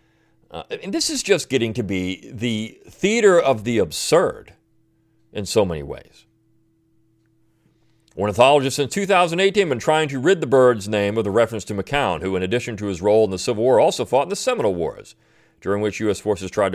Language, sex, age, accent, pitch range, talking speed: English, male, 40-59, American, 105-150 Hz, 195 wpm